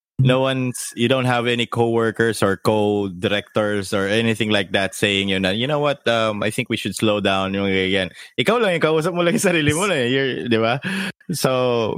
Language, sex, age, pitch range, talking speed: English, male, 20-39, 95-115 Hz, 145 wpm